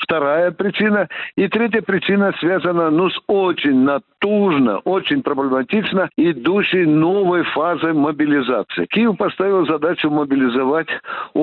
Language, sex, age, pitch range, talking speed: Russian, male, 60-79, 145-195 Hz, 105 wpm